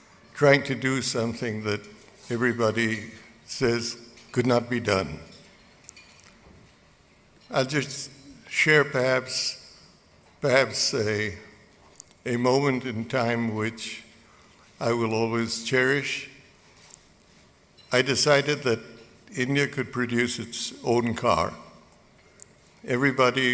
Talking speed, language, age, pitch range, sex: 90 wpm, Hindi, 60-79, 115-130 Hz, male